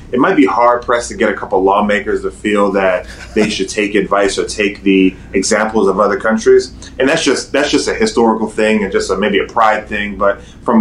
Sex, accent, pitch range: male, American, 95-115 Hz